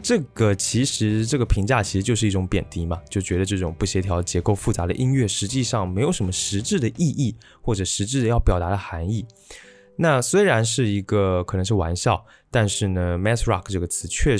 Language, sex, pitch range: Chinese, male, 95-120 Hz